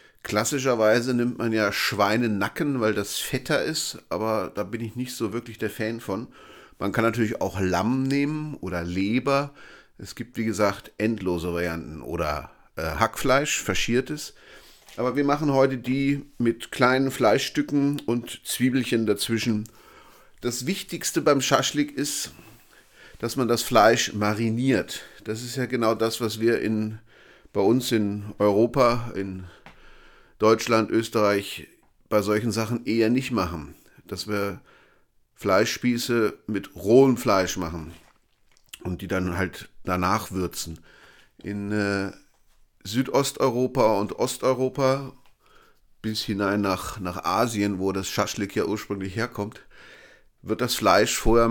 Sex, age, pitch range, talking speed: male, 30-49, 105-125 Hz, 130 wpm